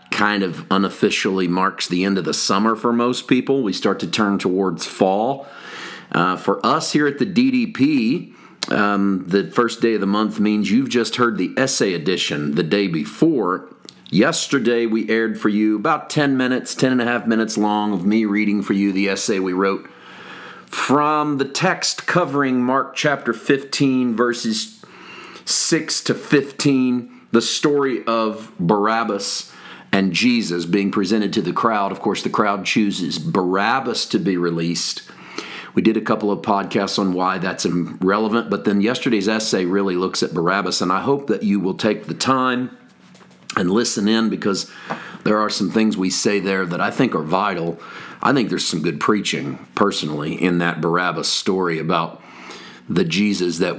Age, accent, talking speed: 40-59, American, 170 wpm